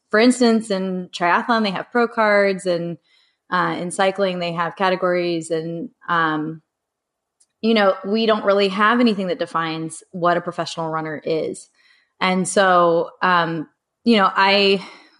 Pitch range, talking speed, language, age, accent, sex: 165-200 Hz, 145 wpm, English, 20-39, American, female